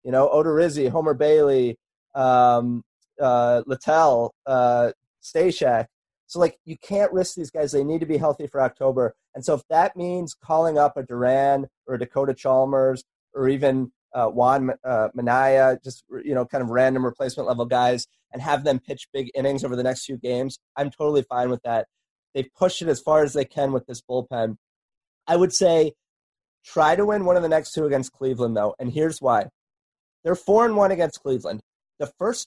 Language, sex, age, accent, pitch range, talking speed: English, male, 30-49, American, 130-165 Hz, 190 wpm